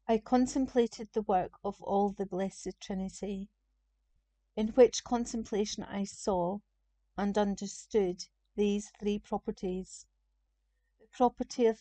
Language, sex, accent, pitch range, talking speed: English, female, British, 175-215 Hz, 110 wpm